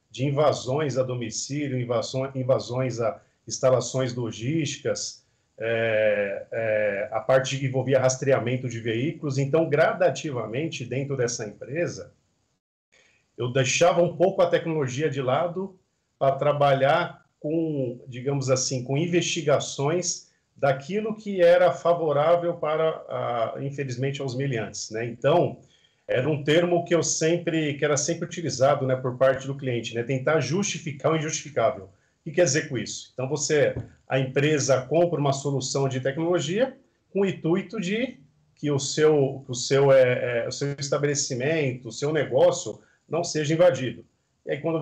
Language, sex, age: Portuguese, male, 40-59